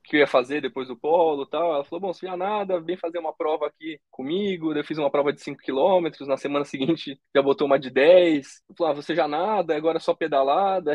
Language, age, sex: Portuguese, 20-39, male